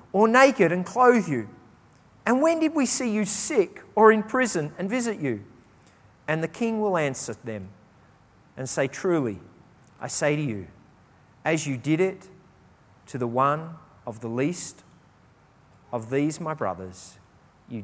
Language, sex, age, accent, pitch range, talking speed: English, male, 40-59, Australian, 115-170 Hz, 155 wpm